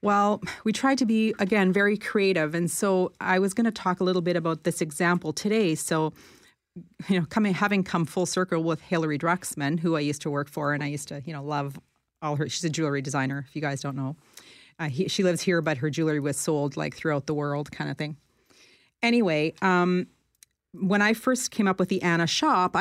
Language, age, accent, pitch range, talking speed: English, 30-49, American, 150-190 Hz, 225 wpm